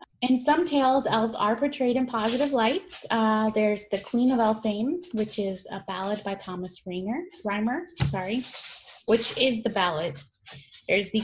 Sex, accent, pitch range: female, American, 185-245 Hz